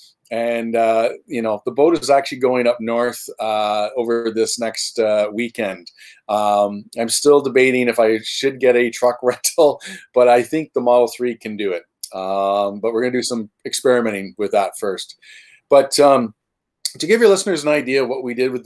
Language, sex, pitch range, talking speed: English, male, 115-140 Hz, 195 wpm